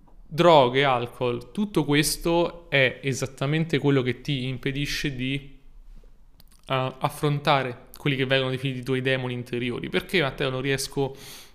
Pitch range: 130-155 Hz